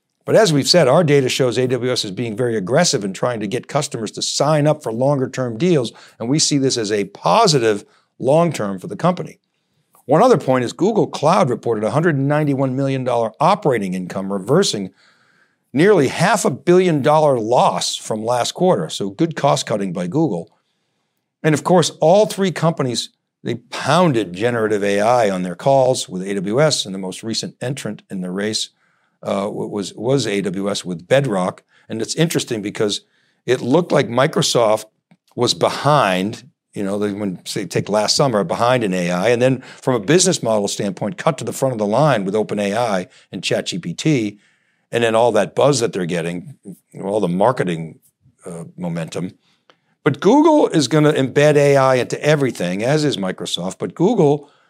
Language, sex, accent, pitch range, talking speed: English, male, American, 105-150 Hz, 175 wpm